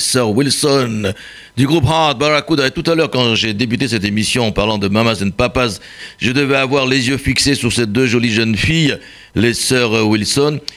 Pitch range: 105-135 Hz